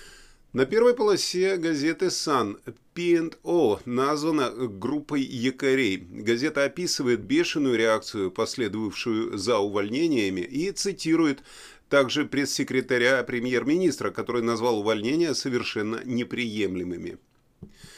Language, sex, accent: Russian, male, native